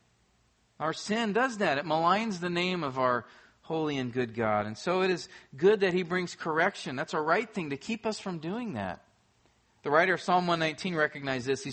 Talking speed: 210 wpm